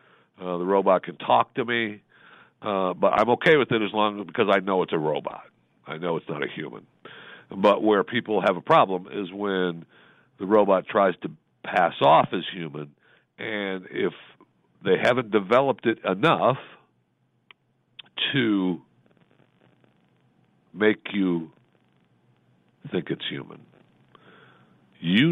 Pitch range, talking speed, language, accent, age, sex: 90-120 Hz, 135 wpm, English, American, 60-79, male